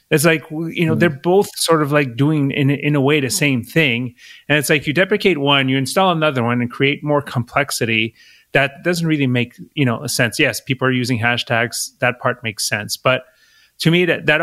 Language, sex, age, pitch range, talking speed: English, male, 30-49, 120-155 Hz, 220 wpm